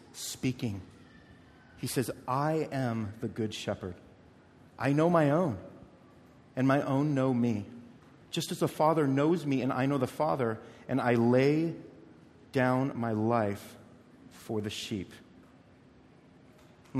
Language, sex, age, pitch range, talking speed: English, male, 40-59, 115-135 Hz, 135 wpm